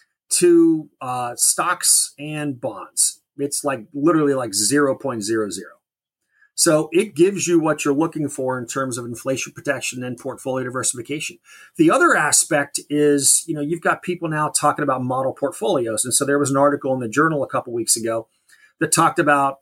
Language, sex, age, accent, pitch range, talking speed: English, male, 30-49, American, 130-165 Hz, 175 wpm